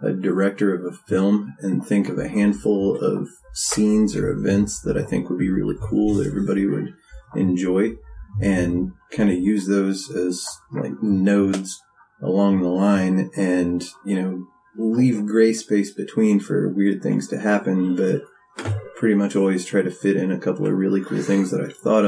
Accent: American